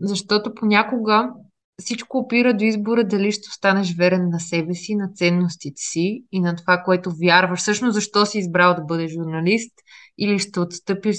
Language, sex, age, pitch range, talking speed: Bulgarian, female, 20-39, 170-200 Hz, 165 wpm